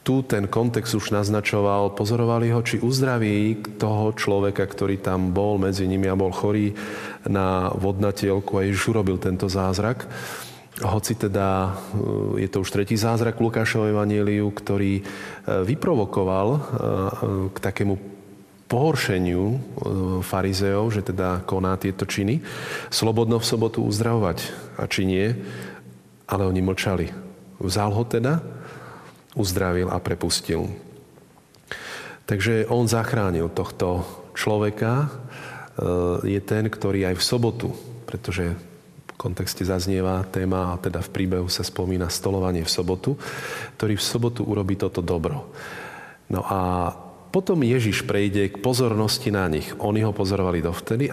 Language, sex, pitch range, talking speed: Slovak, male, 95-110 Hz, 125 wpm